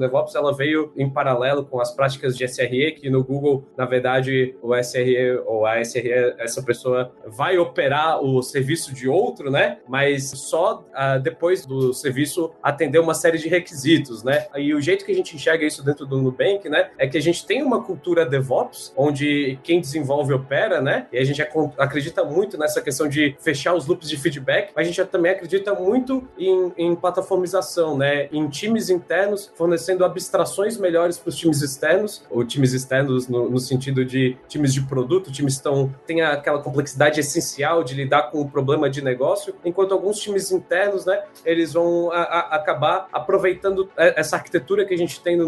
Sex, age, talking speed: male, 20-39, 185 wpm